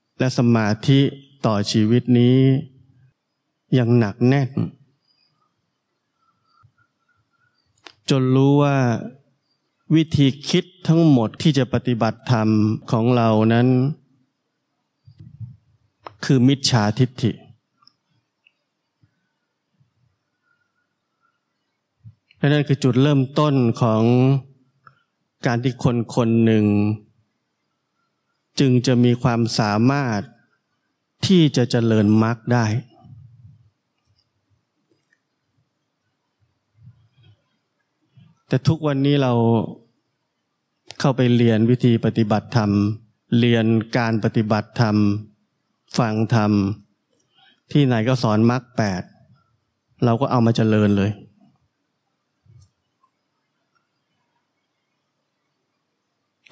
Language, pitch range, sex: Thai, 110-135 Hz, male